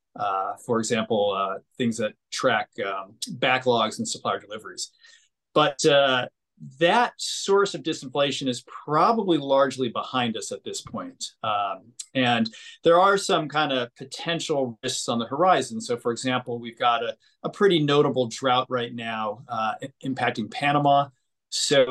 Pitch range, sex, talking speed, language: 120-170 Hz, male, 150 wpm, English